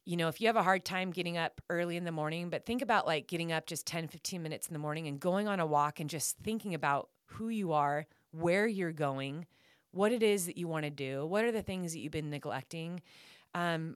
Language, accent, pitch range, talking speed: English, American, 150-180 Hz, 255 wpm